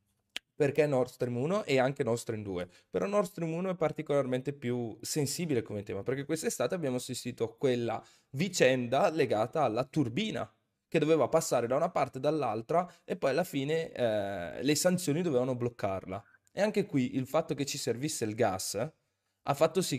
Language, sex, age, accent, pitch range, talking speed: Italian, male, 20-39, native, 115-150 Hz, 175 wpm